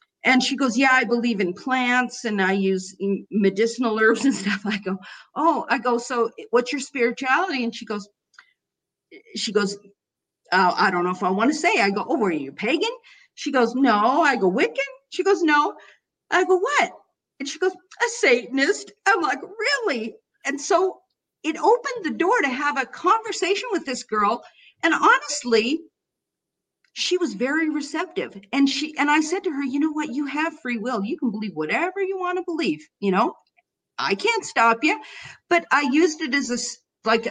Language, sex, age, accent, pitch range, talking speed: English, female, 50-69, American, 225-330 Hz, 190 wpm